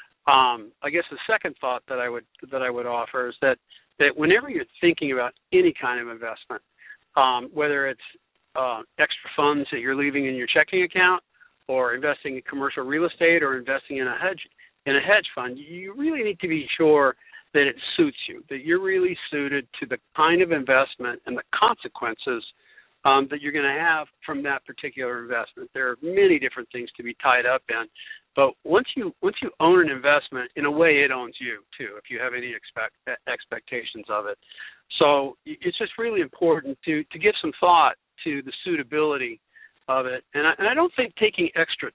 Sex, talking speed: male, 205 wpm